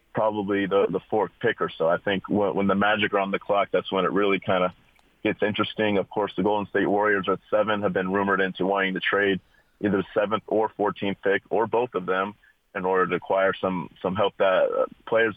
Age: 30-49